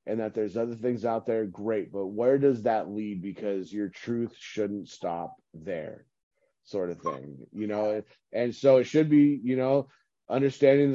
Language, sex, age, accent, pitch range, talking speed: English, male, 30-49, American, 105-125 Hz, 175 wpm